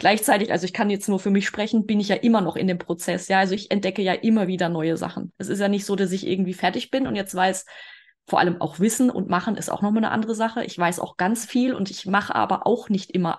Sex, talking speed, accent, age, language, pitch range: female, 285 wpm, German, 20-39, German, 185-225 Hz